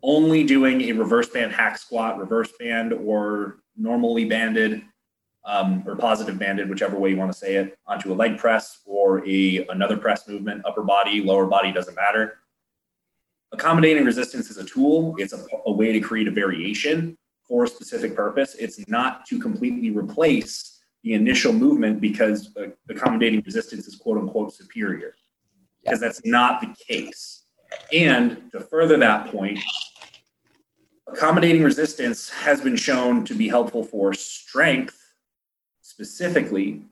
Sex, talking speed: male, 150 wpm